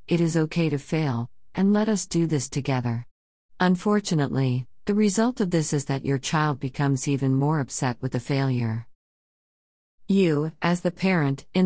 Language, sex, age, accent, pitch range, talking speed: English, female, 50-69, American, 130-165 Hz, 165 wpm